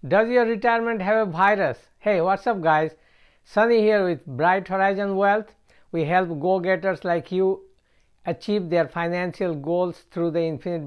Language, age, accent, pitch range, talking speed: English, 60-79, Indian, 155-195 Hz, 155 wpm